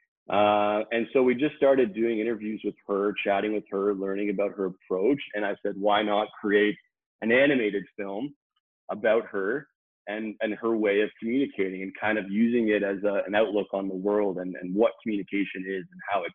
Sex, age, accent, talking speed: male, 30-49, American, 200 wpm